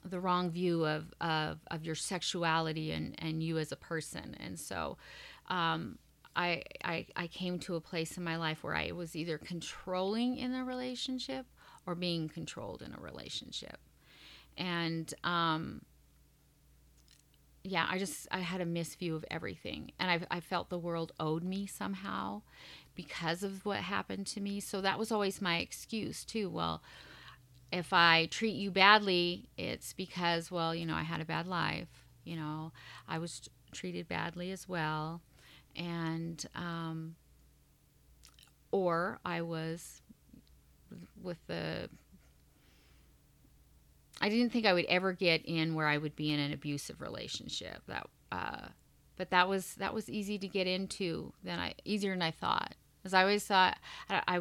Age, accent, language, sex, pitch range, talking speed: 30-49, American, English, female, 155-185 Hz, 155 wpm